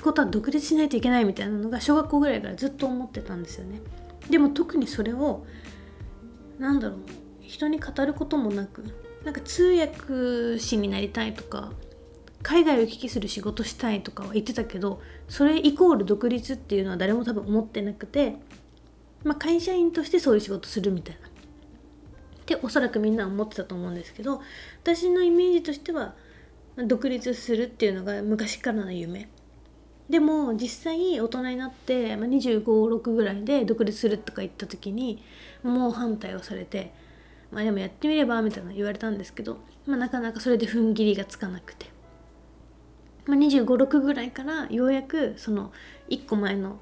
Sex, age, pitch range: female, 30-49, 210-275 Hz